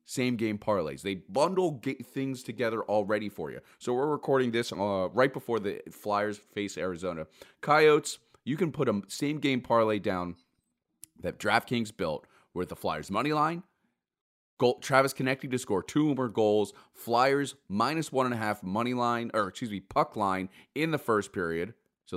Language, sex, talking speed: English, male, 175 wpm